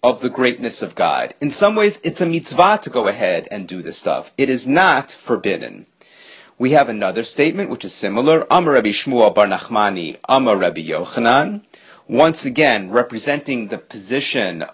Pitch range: 130-185 Hz